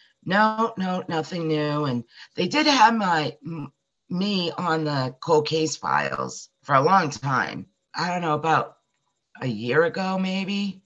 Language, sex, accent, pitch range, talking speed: English, female, American, 135-185 Hz, 155 wpm